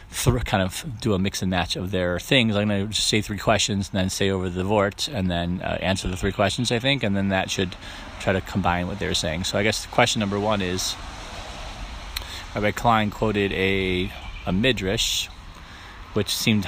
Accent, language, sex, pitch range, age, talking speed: American, English, male, 90-110 Hz, 30-49, 215 wpm